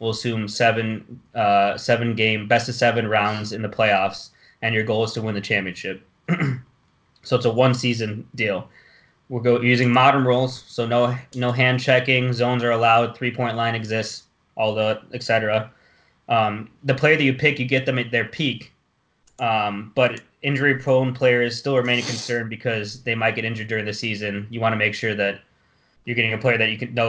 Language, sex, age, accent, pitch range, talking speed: English, male, 20-39, American, 110-125 Hz, 200 wpm